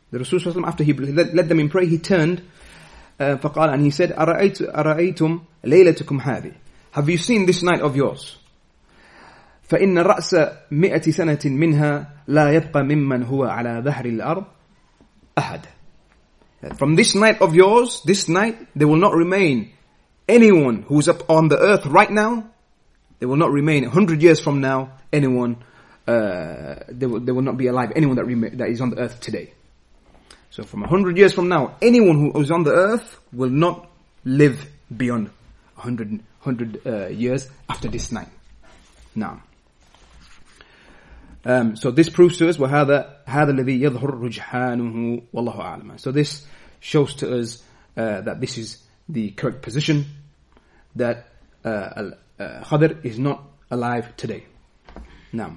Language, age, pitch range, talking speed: English, 30-49, 125-165 Hz, 130 wpm